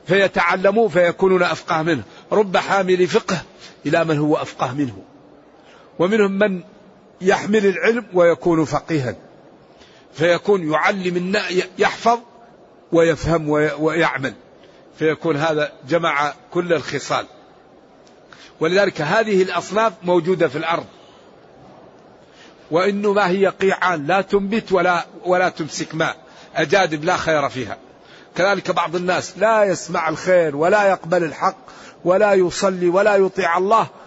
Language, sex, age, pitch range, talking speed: Arabic, male, 50-69, 160-195 Hz, 110 wpm